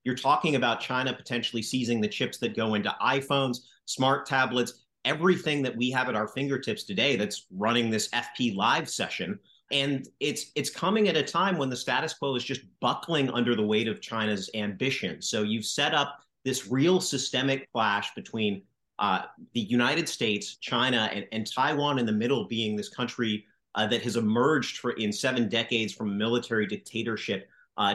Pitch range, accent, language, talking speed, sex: 110-135 Hz, American, English, 180 wpm, male